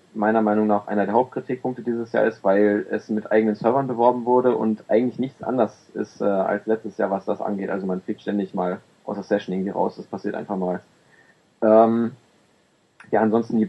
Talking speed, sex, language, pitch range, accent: 200 wpm, male, German, 110-130 Hz, German